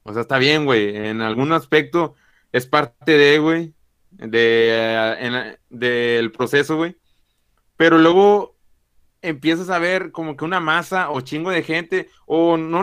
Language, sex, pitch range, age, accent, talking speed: Spanish, male, 130-170 Hz, 30-49, Mexican, 150 wpm